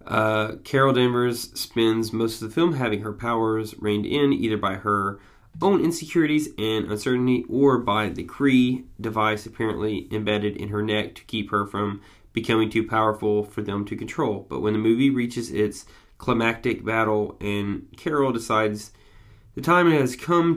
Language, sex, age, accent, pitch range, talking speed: English, male, 20-39, American, 110-130 Hz, 165 wpm